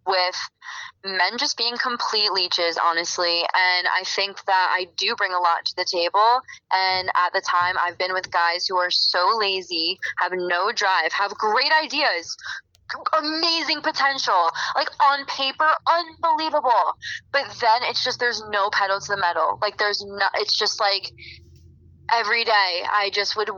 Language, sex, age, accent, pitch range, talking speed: English, female, 20-39, American, 175-225 Hz, 165 wpm